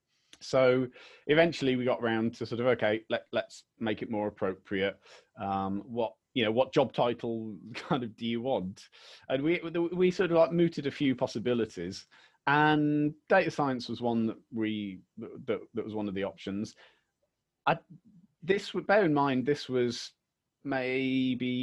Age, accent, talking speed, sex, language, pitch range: 30-49, British, 165 wpm, male, English, 110-145 Hz